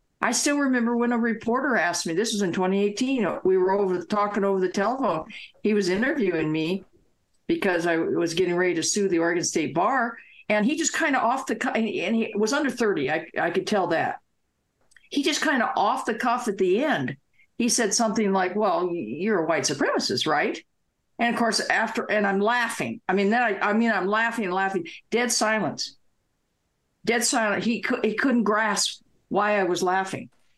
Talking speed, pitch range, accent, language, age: 195 wpm, 195-255 Hz, American, English, 50-69